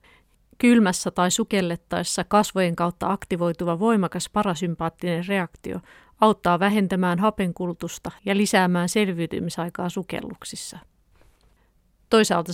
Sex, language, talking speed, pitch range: female, Finnish, 80 wpm, 175-205 Hz